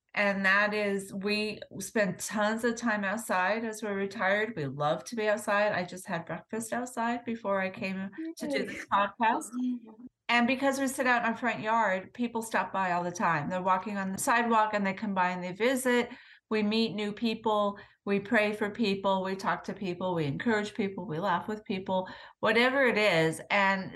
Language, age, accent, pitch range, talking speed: English, 40-59, American, 180-215 Hz, 200 wpm